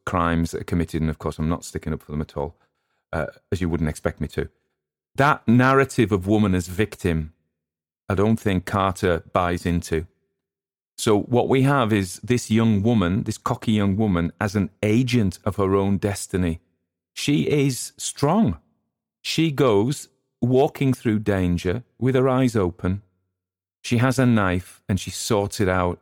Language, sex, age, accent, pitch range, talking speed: English, male, 40-59, British, 85-110 Hz, 170 wpm